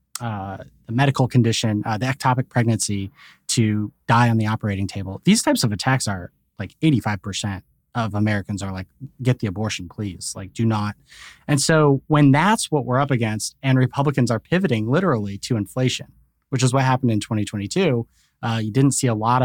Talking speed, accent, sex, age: 180 wpm, American, male, 30-49